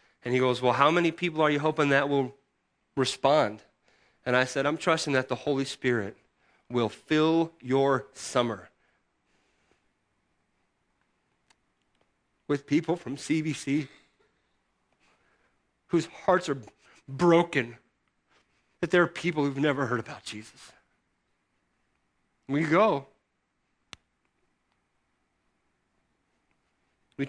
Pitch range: 115-155 Hz